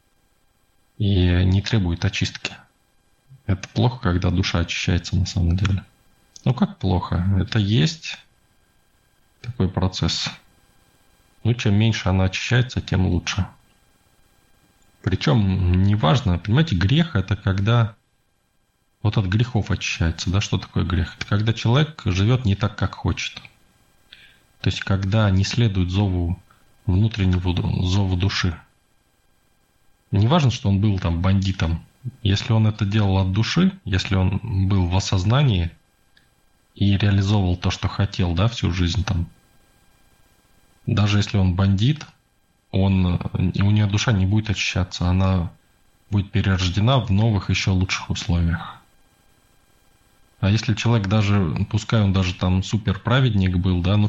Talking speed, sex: 125 wpm, male